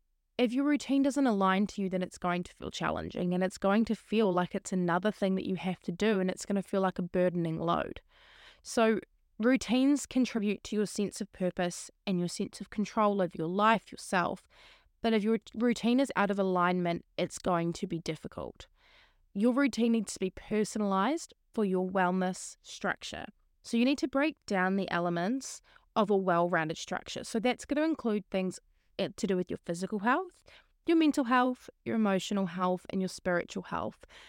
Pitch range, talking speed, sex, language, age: 180-230 Hz, 195 wpm, female, English, 20-39